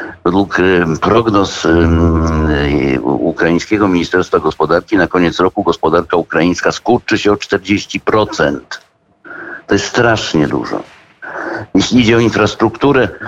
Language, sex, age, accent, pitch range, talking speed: Polish, male, 60-79, native, 95-115 Hz, 110 wpm